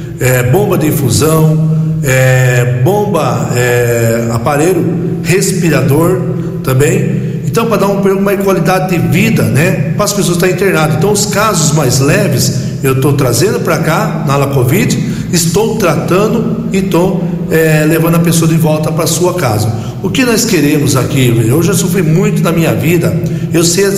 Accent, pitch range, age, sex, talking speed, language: Brazilian, 145-180 Hz, 60-79, male, 160 wpm, Portuguese